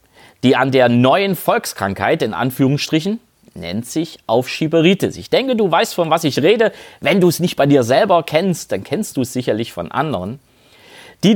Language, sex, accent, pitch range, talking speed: German, male, German, 120-175 Hz, 180 wpm